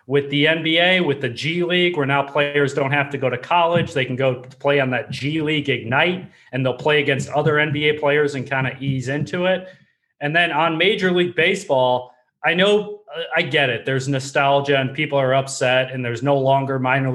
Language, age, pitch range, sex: English, 30-49, 135-170 Hz, male